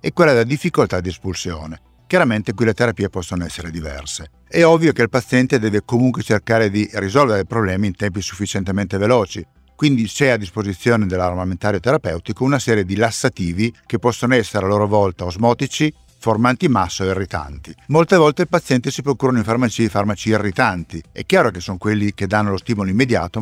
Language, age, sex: Italian, 50-69, male